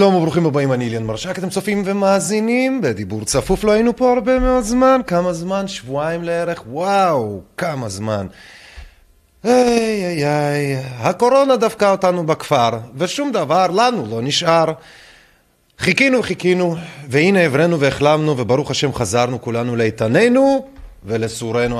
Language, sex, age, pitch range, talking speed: Hebrew, male, 30-49, 120-185 Hz, 130 wpm